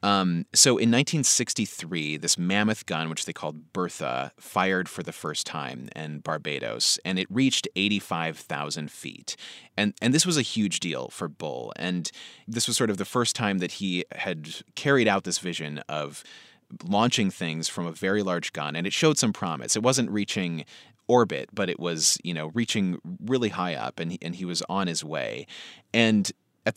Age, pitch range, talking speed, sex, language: 30-49, 80-110 Hz, 185 wpm, male, English